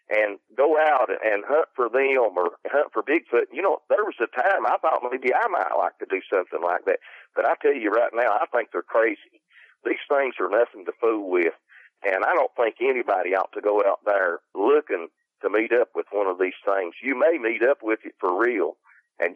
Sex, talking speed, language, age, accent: male, 225 wpm, English, 50-69, American